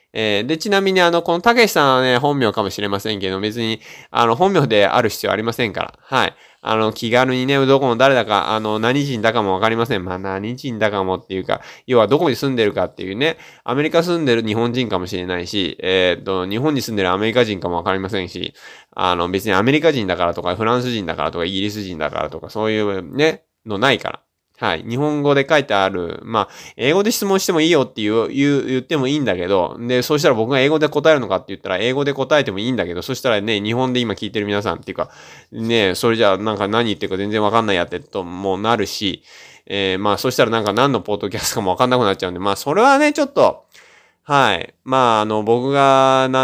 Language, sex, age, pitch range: Japanese, male, 20-39, 95-140 Hz